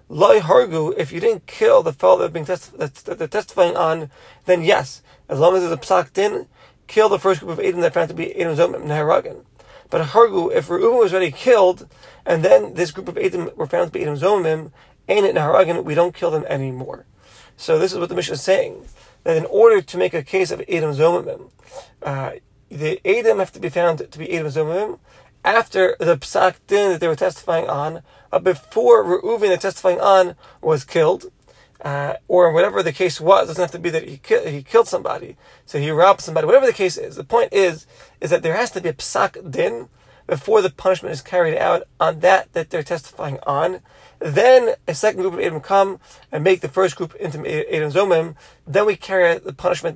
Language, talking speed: English, 215 wpm